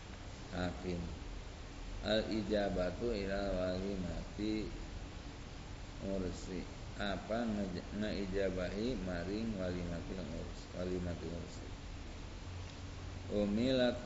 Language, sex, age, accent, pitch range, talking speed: Indonesian, male, 50-69, native, 90-100 Hz, 75 wpm